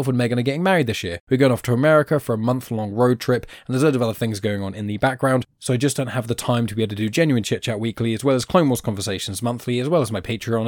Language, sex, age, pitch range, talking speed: English, male, 10-29, 110-135 Hz, 320 wpm